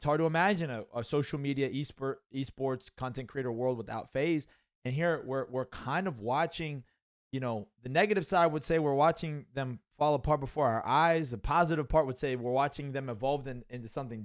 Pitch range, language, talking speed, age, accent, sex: 135-175 Hz, English, 205 wpm, 20-39, American, male